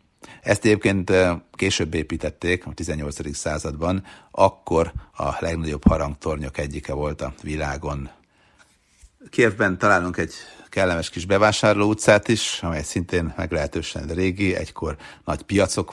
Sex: male